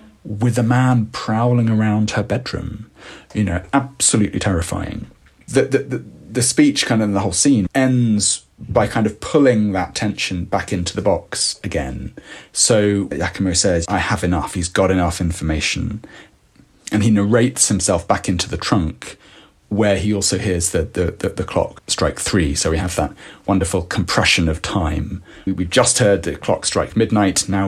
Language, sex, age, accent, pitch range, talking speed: English, male, 30-49, British, 90-110 Hz, 175 wpm